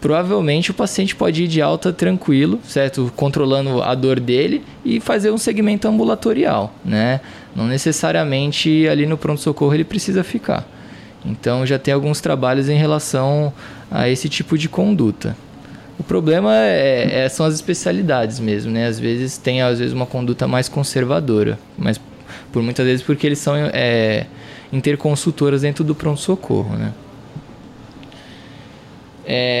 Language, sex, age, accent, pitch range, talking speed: Portuguese, male, 20-39, Brazilian, 125-160 Hz, 135 wpm